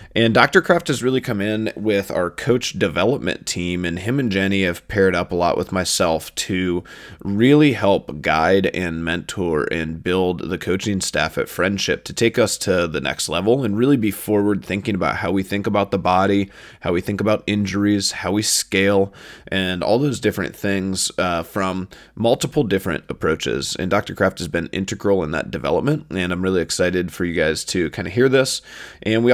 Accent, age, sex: American, 20-39, male